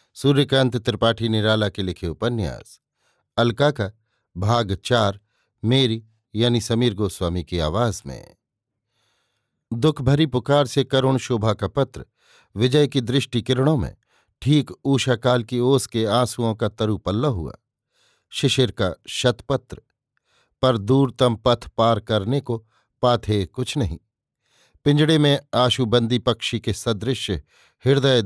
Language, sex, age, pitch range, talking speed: Hindi, male, 50-69, 110-130 Hz, 125 wpm